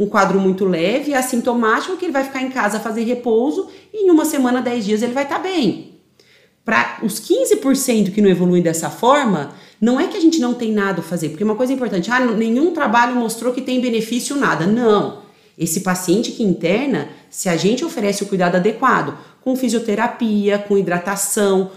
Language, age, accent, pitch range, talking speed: Portuguese, 40-59, Brazilian, 195-260 Hz, 195 wpm